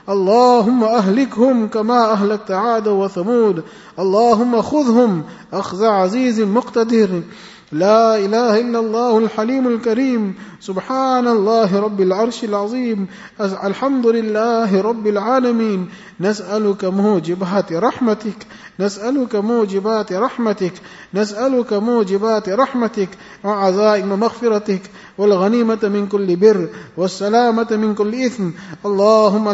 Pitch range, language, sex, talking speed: 190-225 Hz, English, male, 90 wpm